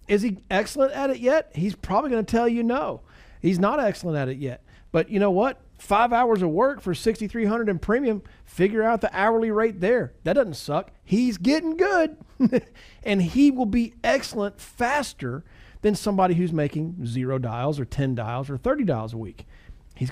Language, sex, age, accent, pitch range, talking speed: English, male, 40-59, American, 155-220 Hz, 190 wpm